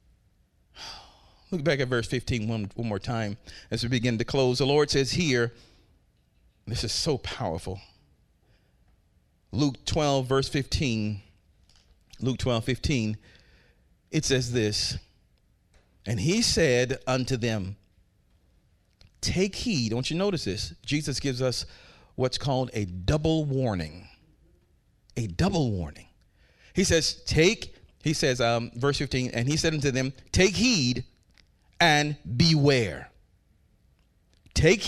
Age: 40-59